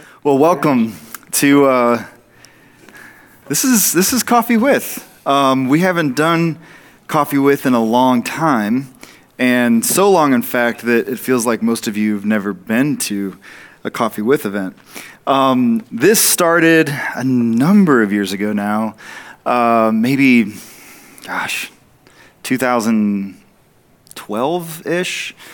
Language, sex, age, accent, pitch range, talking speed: English, male, 20-39, American, 115-160 Hz, 125 wpm